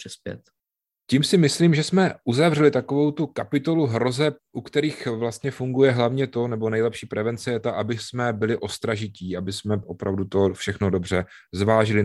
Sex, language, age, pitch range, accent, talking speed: male, Czech, 30-49, 100-130 Hz, native, 160 wpm